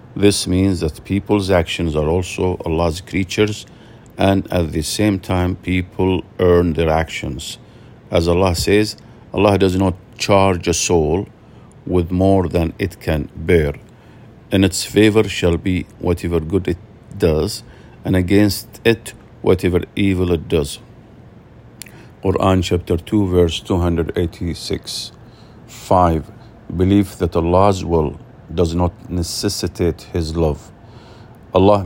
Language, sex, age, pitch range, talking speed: English, male, 50-69, 85-105 Hz, 120 wpm